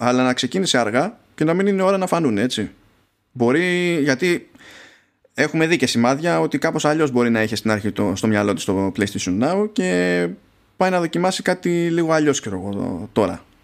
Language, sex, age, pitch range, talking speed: Greek, male, 20-39, 110-160 Hz, 180 wpm